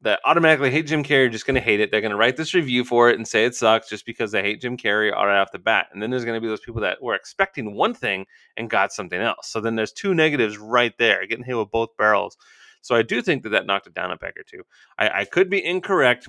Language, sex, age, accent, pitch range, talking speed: English, male, 30-49, American, 110-145 Hz, 300 wpm